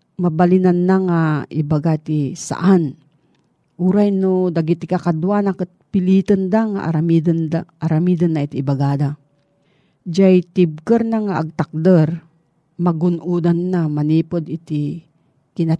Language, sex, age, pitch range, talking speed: Filipino, female, 40-59, 155-195 Hz, 95 wpm